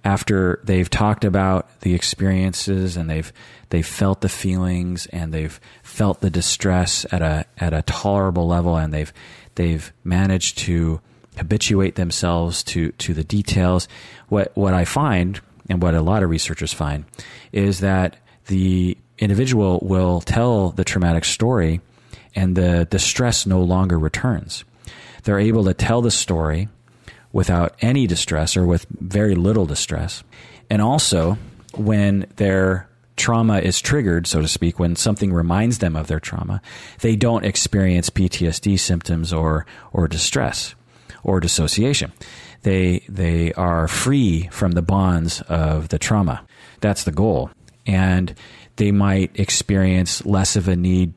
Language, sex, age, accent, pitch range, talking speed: English, male, 30-49, American, 85-105 Hz, 145 wpm